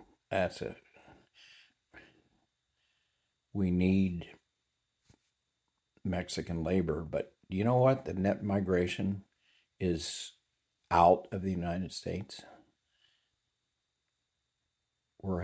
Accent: American